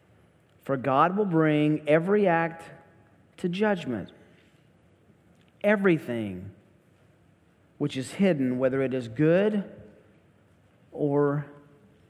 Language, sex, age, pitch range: English, male, 40-59, 150-195 Hz